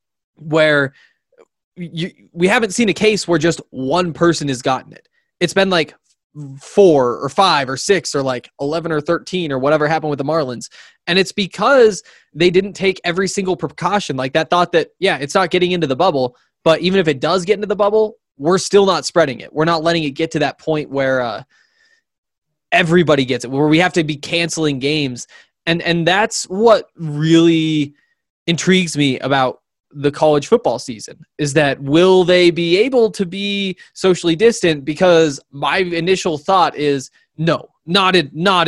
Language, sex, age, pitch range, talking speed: English, male, 20-39, 145-185 Hz, 180 wpm